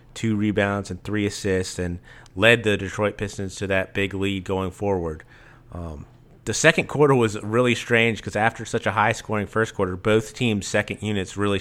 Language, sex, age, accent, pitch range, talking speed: English, male, 30-49, American, 95-115 Hz, 185 wpm